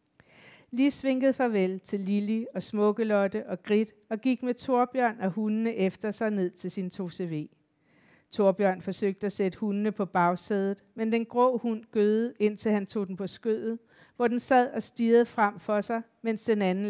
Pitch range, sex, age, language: 190-225 Hz, female, 50-69, Danish